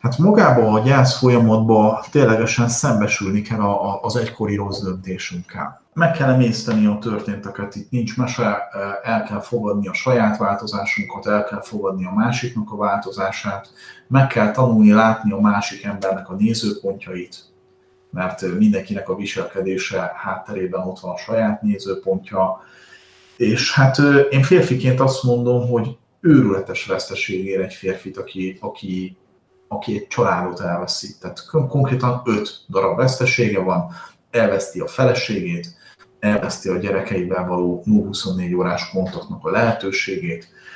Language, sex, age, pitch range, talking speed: Hungarian, male, 40-59, 95-125 Hz, 130 wpm